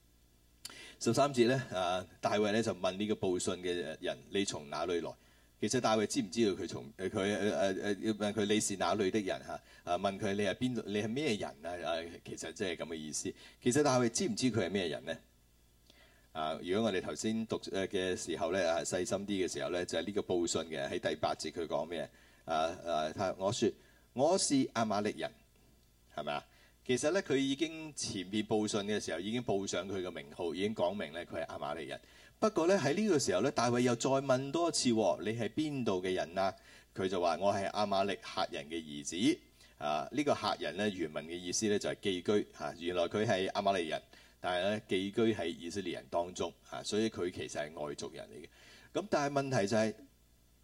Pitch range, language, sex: 80-115 Hz, Chinese, male